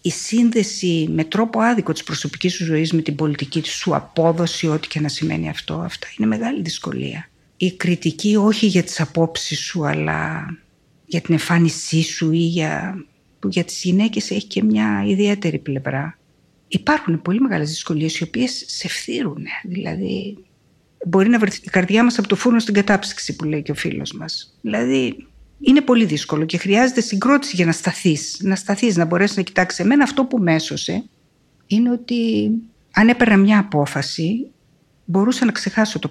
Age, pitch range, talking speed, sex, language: 50-69, 160-215 Hz, 170 wpm, female, Greek